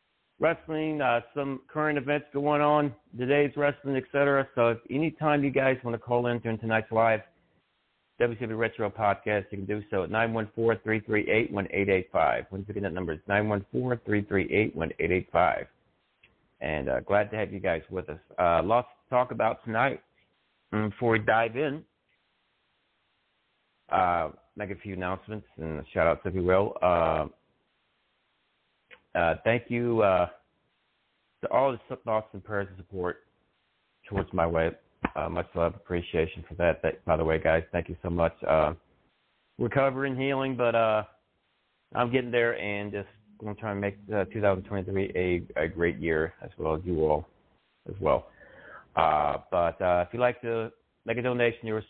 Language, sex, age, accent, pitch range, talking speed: English, male, 60-79, American, 95-120 Hz, 165 wpm